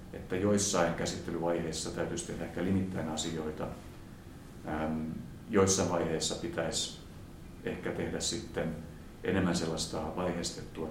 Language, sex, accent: Finnish, male, native